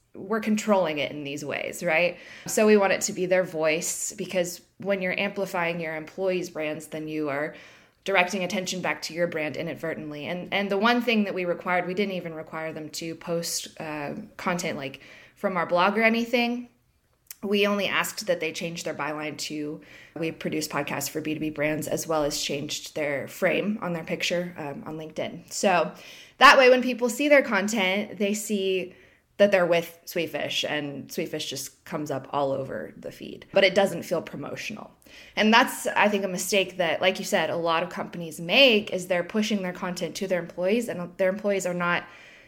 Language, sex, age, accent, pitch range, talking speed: English, female, 20-39, American, 160-195 Hz, 195 wpm